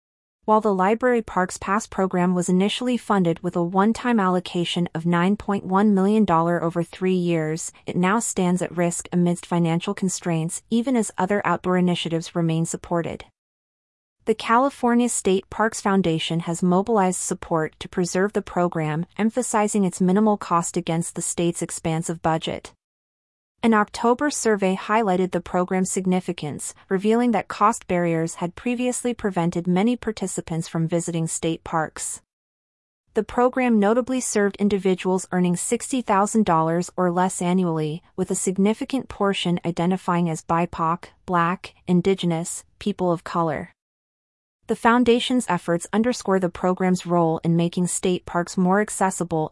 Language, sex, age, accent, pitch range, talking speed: English, female, 30-49, American, 170-210 Hz, 135 wpm